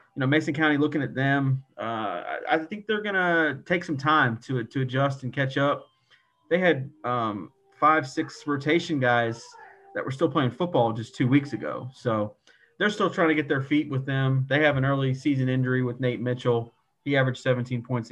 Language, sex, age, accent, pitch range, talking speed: English, male, 30-49, American, 115-145 Hz, 200 wpm